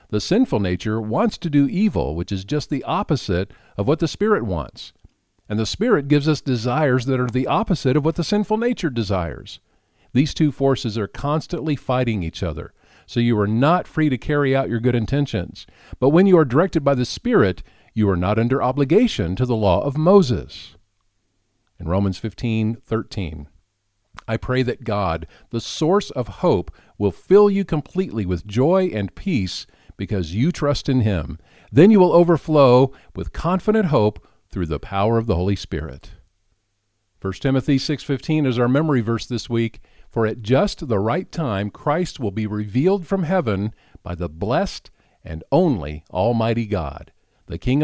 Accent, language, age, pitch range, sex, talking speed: American, English, 50-69, 100-150 Hz, male, 175 wpm